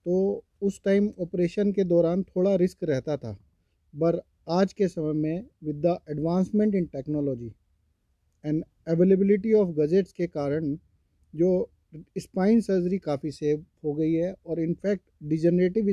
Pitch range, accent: 155-195 Hz, native